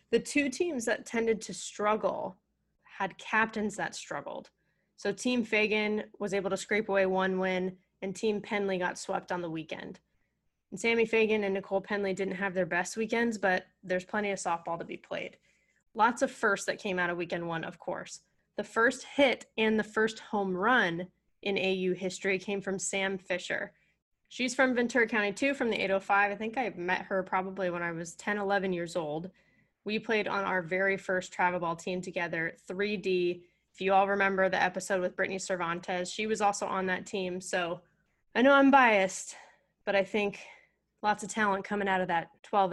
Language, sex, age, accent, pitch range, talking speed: English, female, 20-39, American, 185-215 Hz, 190 wpm